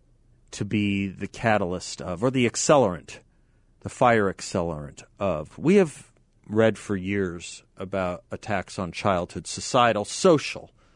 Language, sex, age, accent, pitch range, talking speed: English, male, 40-59, American, 90-120 Hz, 125 wpm